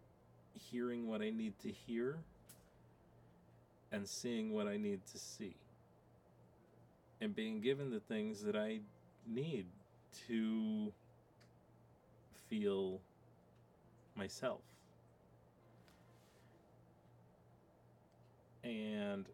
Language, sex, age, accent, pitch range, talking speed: English, male, 30-49, American, 95-130 Hz, 80 wpm